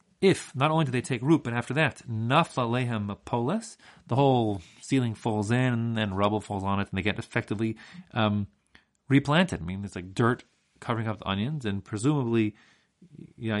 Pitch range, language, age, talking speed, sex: 105-145 Hz, English, 30-49, 180 wpm, male